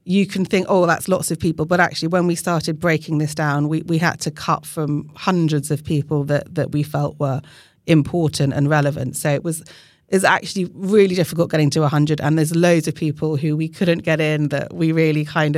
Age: 40-59